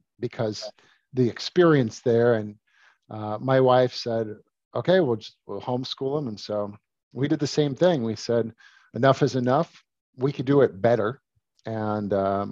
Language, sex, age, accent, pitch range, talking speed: English, male, 50-69, American, 110-130 Hz, 165 wpm